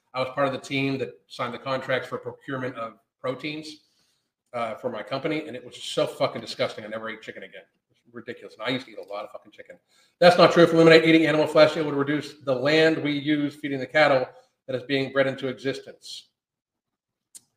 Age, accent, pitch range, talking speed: 40-59, American, 125-150 Hz, 230 wpm